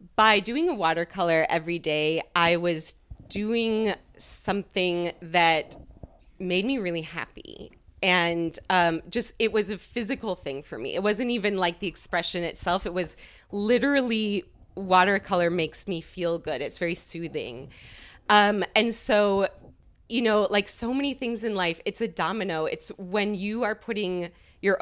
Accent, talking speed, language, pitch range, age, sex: American, 150 wpm, English, 170-210 Hz, 30-49, female